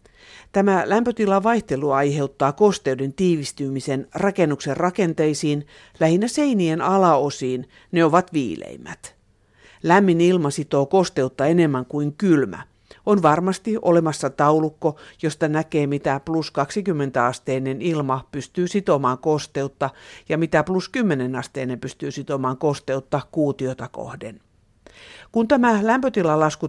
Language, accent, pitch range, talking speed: Finnish, native, 140-200 Hz, 105 wpm